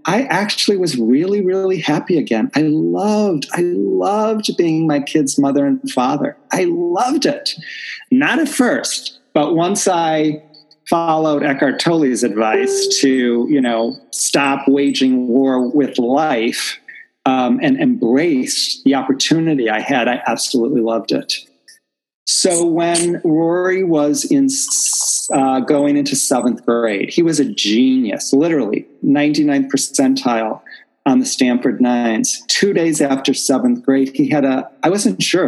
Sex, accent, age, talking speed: male, American, 40-59, 135 wpm